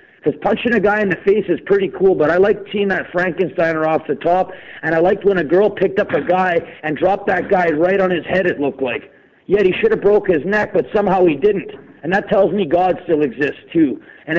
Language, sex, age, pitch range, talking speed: English, male, 40-59, 165-195 Hz, 250 wpm